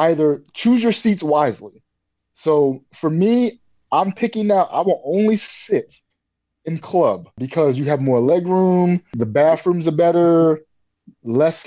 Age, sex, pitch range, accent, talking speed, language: 20-39, male, 135-175 Hz, American, 140 wpm, English